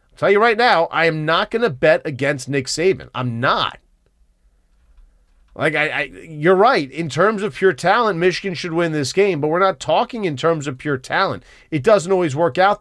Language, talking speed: English, 200 wpm